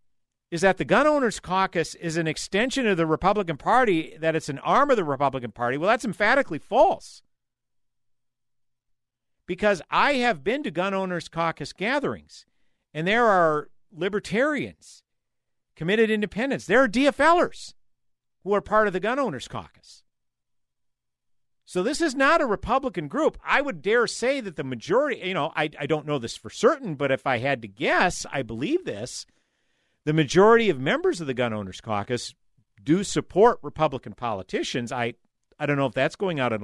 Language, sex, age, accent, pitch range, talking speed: English, male, 50-69, American, 140-215 Hz, 170 wpm